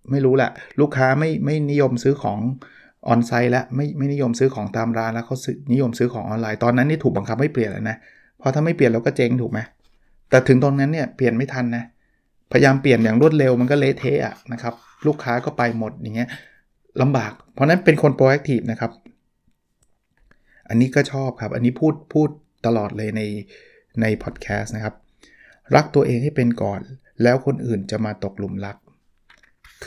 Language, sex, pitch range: Thai, male, 115-145 Hz